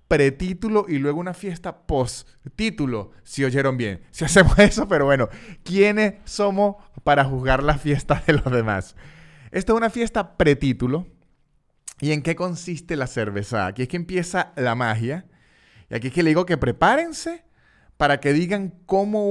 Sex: male